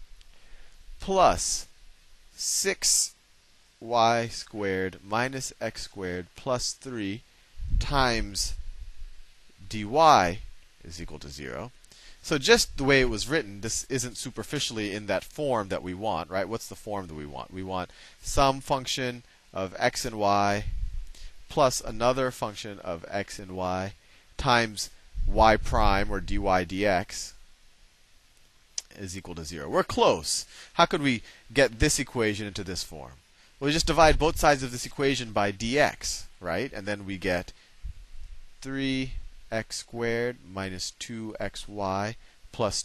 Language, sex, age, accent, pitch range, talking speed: English, male, 30-49, American, 85-115 Hz, 130 wpm